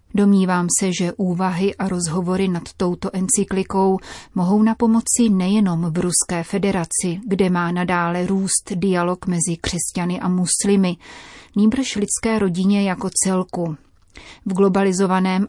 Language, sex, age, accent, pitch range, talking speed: Czech, female, 30-49, native, 180-205 Hz, 125 wpm